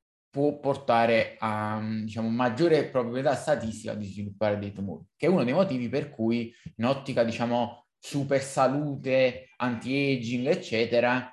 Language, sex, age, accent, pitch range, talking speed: Italian, male, 20-39, native, 110-135 Hz, 130 wpm